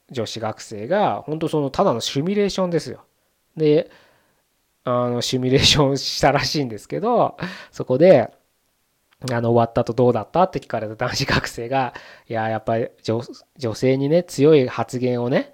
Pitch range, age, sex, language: 120-155 Hz, 20-39, male, Japanese